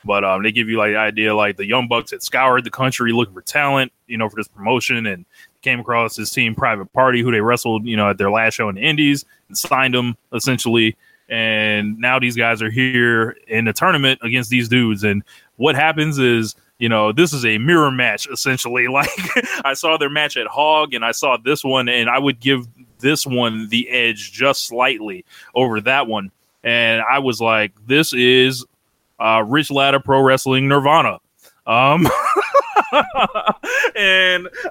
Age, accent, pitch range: 20-39, American, 110-135 Hz